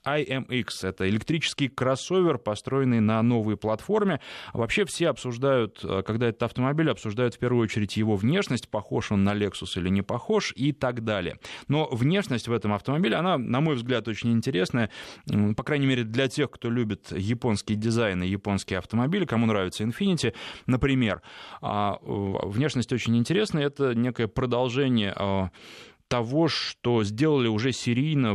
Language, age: Russian, 20-39